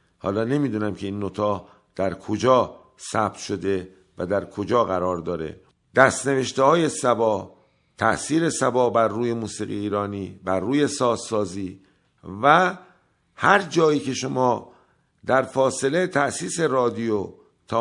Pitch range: 105-135 Hz